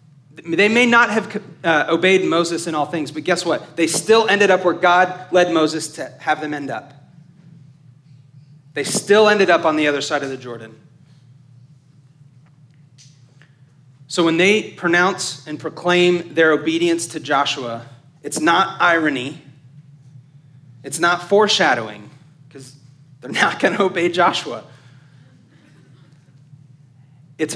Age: 30-49